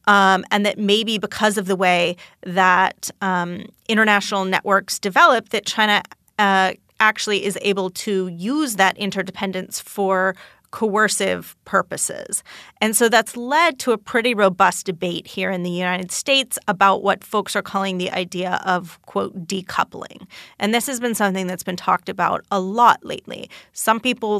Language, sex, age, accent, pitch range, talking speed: English, female, 30-49, American, 185-215 Hz, 155 wpm